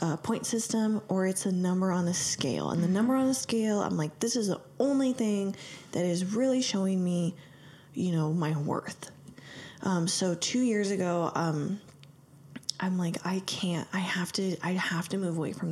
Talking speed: 195 wpm